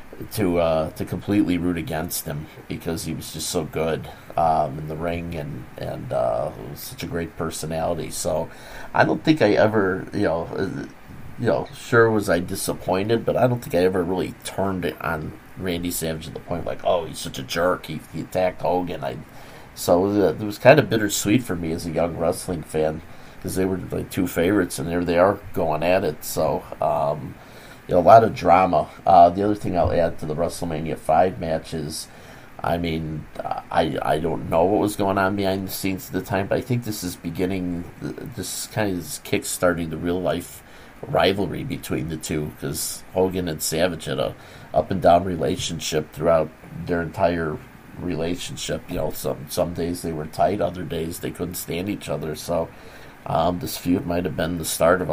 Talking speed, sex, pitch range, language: 200 wpm, male, 80-95 Hz, English